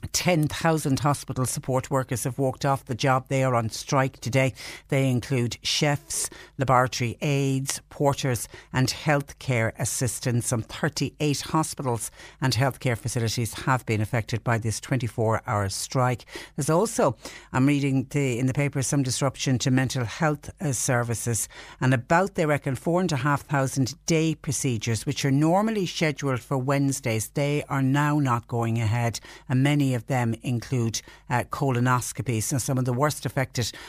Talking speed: 145 wpm